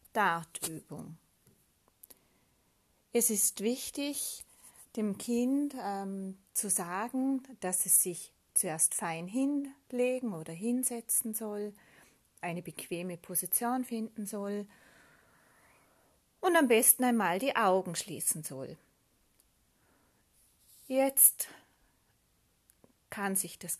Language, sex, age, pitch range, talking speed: German, female, 30-49, 180-250 Hz, 90 wpm